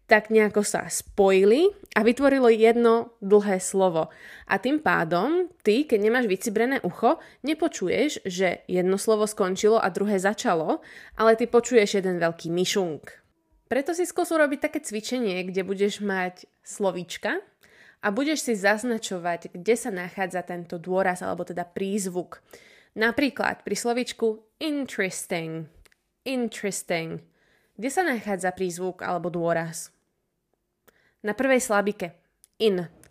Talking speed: 125 wpm